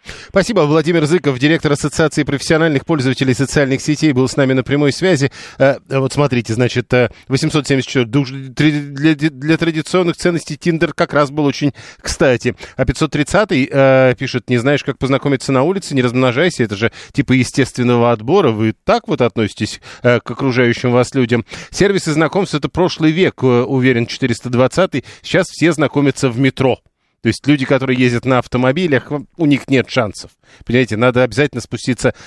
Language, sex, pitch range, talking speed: Russian, male, 125-155 Hz, 150 wpm